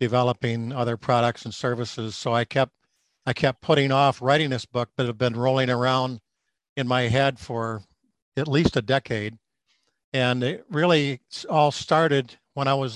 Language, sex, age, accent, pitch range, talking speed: English, male, 50-69, American, 120-135 Hz, 170 wpm